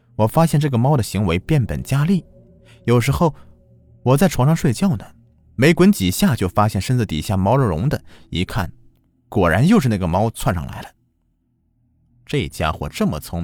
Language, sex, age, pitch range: Chinese, male, 30-49, 90-140 Hz